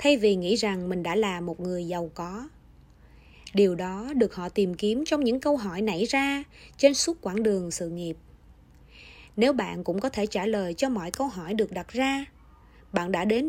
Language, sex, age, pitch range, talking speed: Vietnamese, female, 20-39, 180-270 Hz, 205 wpm